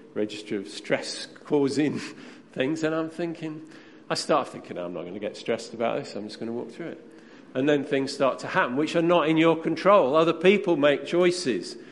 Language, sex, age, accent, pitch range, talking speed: English, male, 50-69, British, 130-185 Hz, 210 wpm